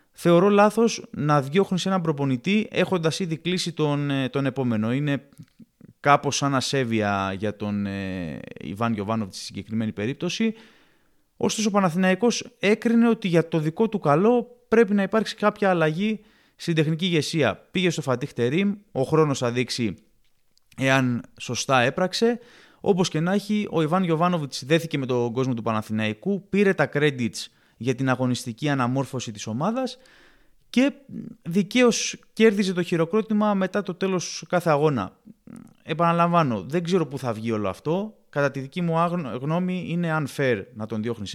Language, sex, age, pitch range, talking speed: Greek, male, 20-39, 130-195 Hz, 150 wpm